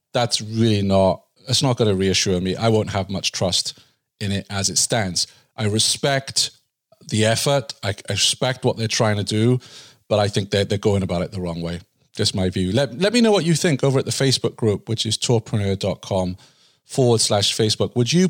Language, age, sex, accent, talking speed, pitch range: English, 40-59, male, British, 215 wpm, 100-120 Hz